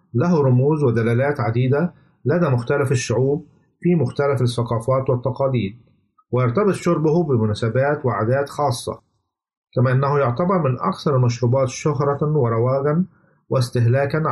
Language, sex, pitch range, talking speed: Arabic, male, 125-150 Hz, 105 wpm